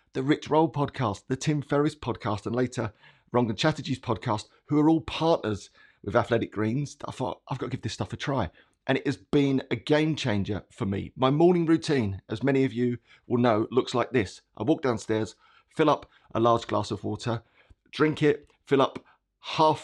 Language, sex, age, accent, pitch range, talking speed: English, male, 30-49, British, 115-150 Hz, 200 wpm